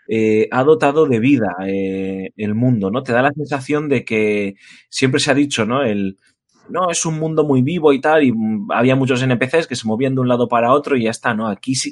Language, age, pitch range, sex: Spanish, 20-39, 105-135 Hz, male